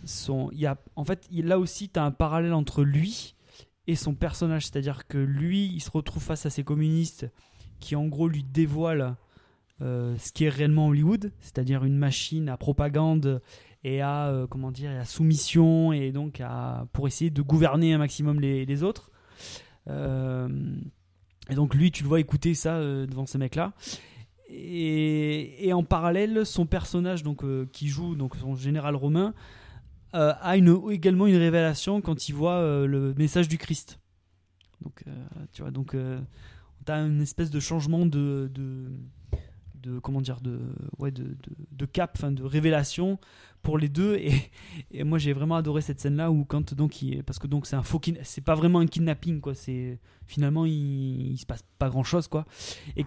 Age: 20-39